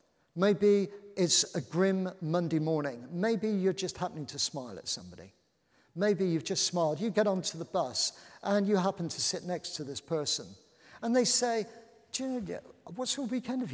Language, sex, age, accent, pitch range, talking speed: English, male, 50-69, British, 145-190 Hz, 175 wpm